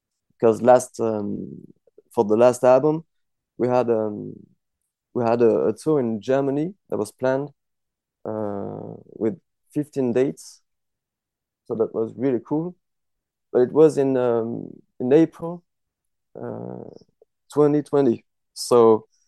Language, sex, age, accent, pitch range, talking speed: English, male, 30-49, French, 110-140 Hz, 125 wpm